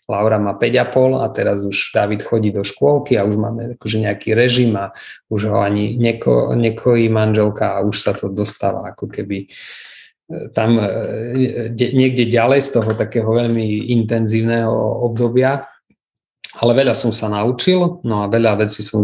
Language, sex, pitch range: Slovak, male, 105-120 Hz